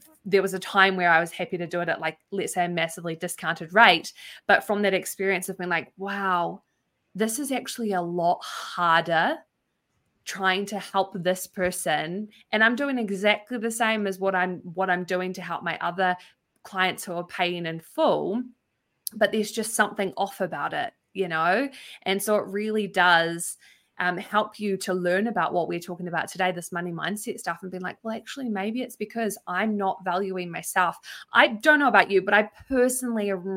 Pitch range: 180-210 Hz